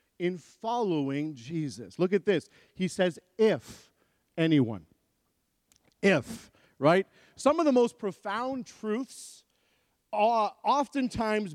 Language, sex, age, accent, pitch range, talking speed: English, male, 50-69, American, 165-230 Hz, 100 wpm